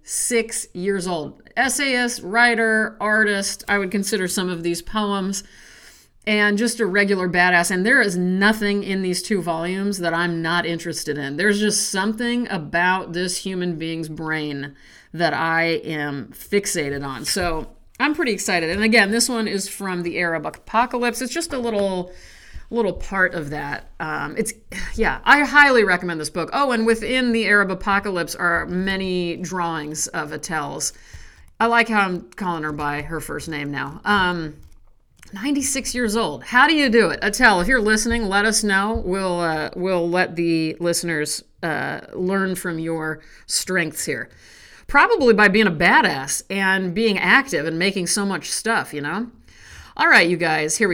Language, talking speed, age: English, 170 wpm, 50-69